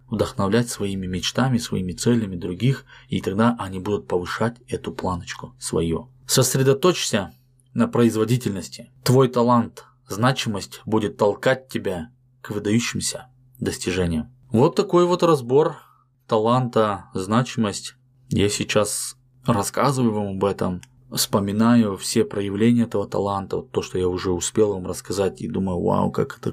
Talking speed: 125 wpm